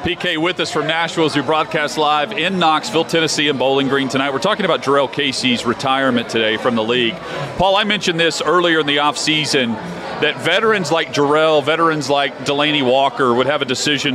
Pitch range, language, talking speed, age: 140-170 Hz, English, 195 wpm, 40-59